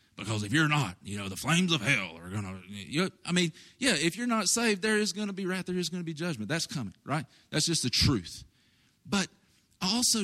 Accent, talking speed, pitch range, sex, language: American, 245 wpm, 125-185 Hz, male, English